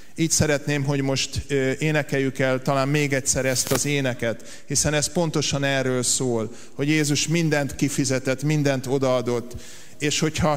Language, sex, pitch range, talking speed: Hungarian, male, 140-190 Hz, 140 wpm